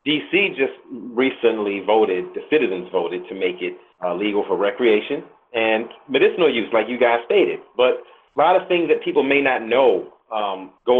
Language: English